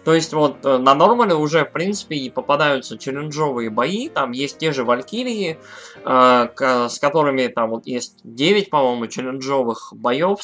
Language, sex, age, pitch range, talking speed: Russian, male, 20-39, 125-155 Hz, 160 wpm